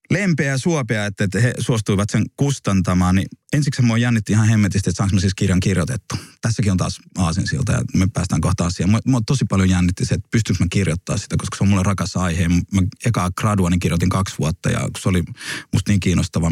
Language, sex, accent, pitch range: Finnish, male, native, 95-130 Hz